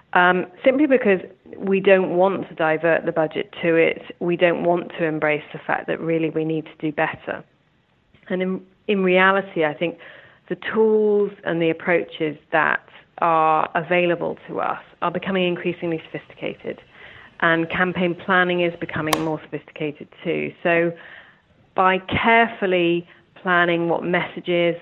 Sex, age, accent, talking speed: female, 30-49, British, 145 wpm